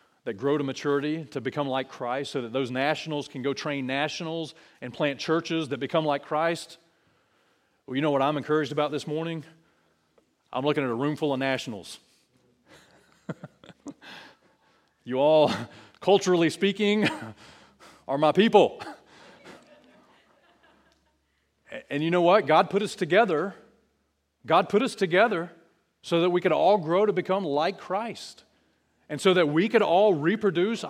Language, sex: English, male